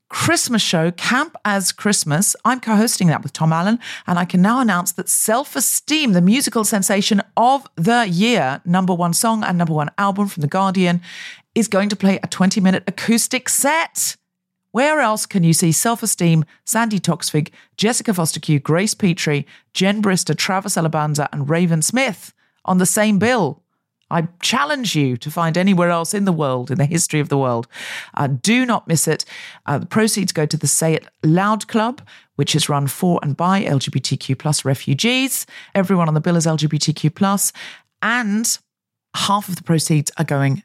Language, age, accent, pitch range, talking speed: English, 40-59, British, 150-210 Hz, 175 wpm